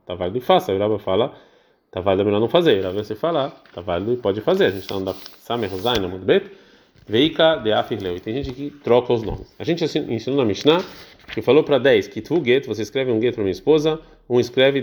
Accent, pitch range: Brazilian, 105-155 Hz